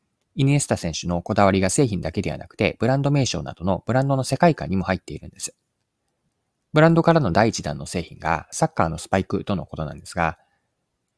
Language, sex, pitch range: Japanese, male, 90-130 Hz